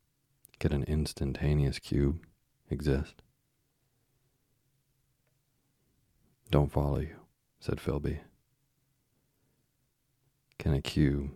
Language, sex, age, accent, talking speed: English, male, 40-59, American, 70 wpm